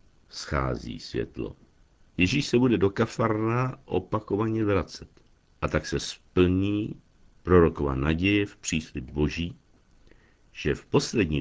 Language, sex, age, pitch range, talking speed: Czech, male, 60-79, 85-115 Hz, 110 wpm